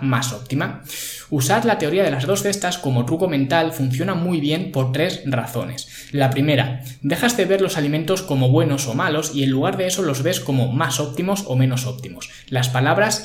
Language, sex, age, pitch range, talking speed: Spanish, male, 20-39, 130-170 Hz, 200 wpm